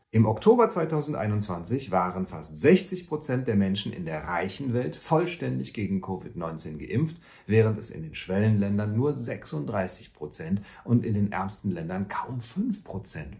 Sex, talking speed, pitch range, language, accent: male, 135 wpm, 95-120 Hz, German, German